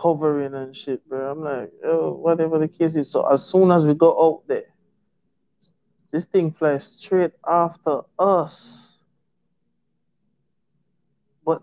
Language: English